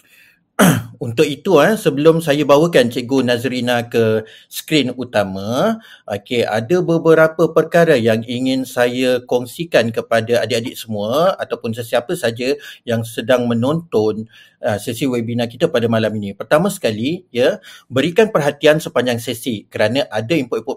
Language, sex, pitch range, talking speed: Malay, male, 120-155 Hz, 120 wpm